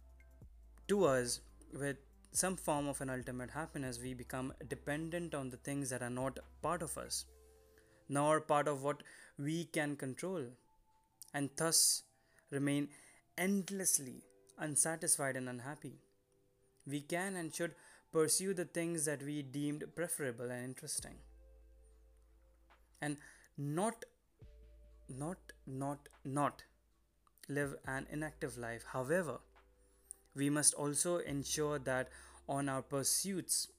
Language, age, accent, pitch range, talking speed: Hindi, 20-39, native, 115-150 Hz, 115 wpm